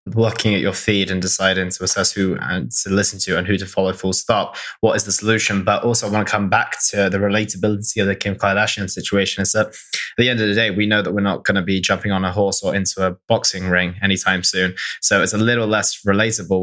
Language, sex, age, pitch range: English, male, 20-39, 95-105 Hz